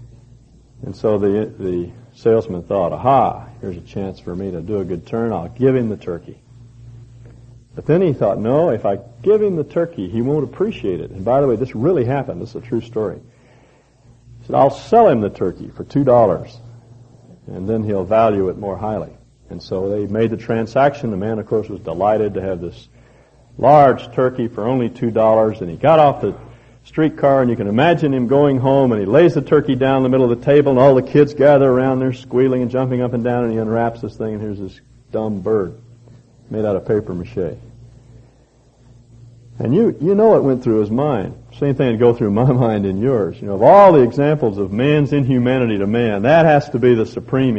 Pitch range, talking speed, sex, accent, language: 110-130 Hz, 220 wpm, male, American, English